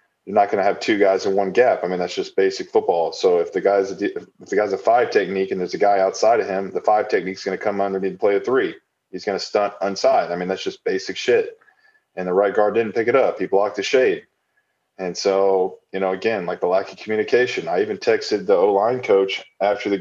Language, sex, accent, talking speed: English, male, American, 260 wpm